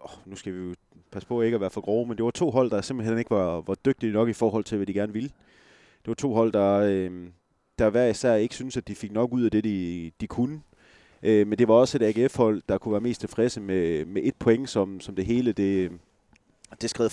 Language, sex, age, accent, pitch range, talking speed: Danish, male, 30-49, native, 95-115 Hz, 255 wpm